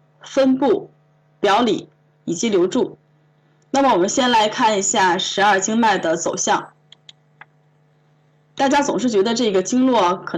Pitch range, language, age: 155-255 Hz, Chinese, 20-39